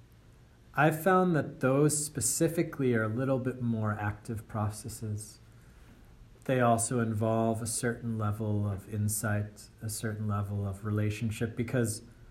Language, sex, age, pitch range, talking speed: English, male, 40-59, 100-115 Hz, 125 wpm